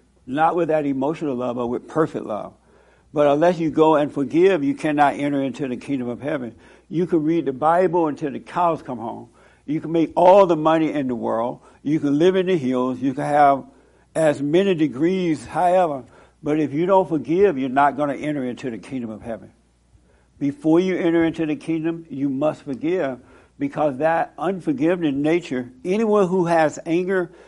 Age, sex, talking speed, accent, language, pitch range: 60-79, male, 190 wpm, American, English, 135-170 Hz